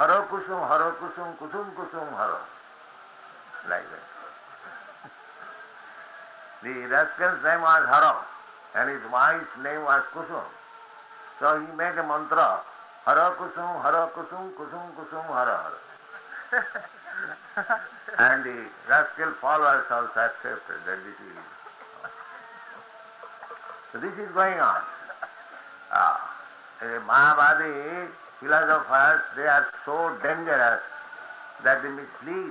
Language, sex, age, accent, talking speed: English, male, 60-79, Indian, 105 wpm